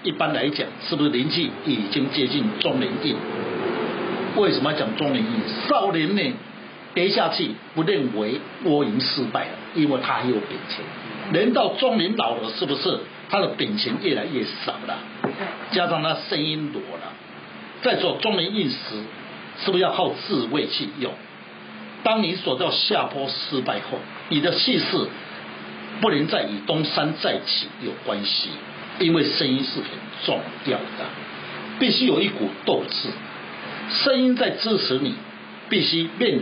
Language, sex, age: Chinese, male, 60-79